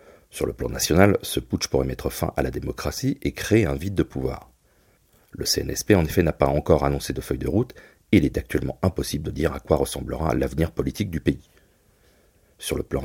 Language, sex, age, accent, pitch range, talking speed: French, male, 40-59, French, 70-90 Hz, 220 wpm